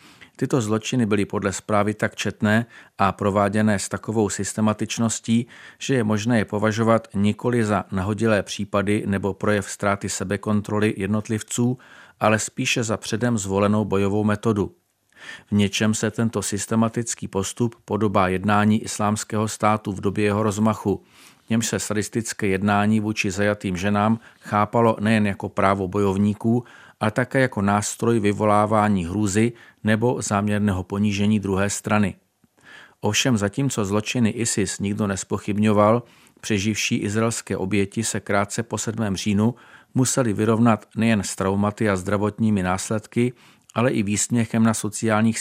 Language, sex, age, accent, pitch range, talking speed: Czech, male, 40-59, native, 100-115 Hz, 130 wpm